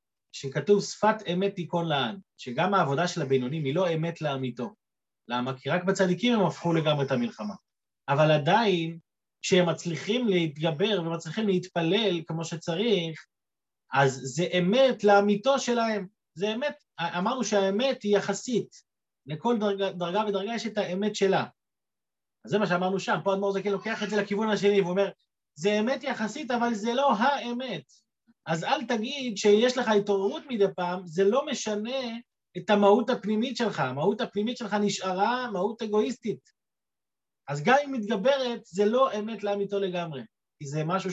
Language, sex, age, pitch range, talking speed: Hebrew, male, 30-49, 165-215 Hz, 150 wpm